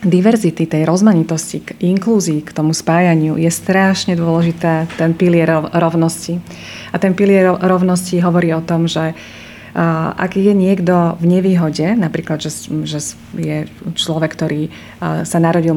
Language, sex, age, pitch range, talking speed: Slovak, female, 30-49, 165-185 Hz, 135 wpm